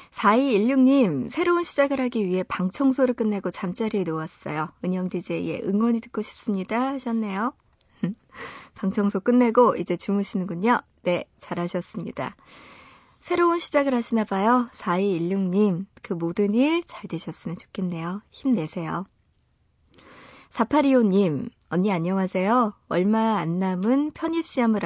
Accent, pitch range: native, 180-240 Hz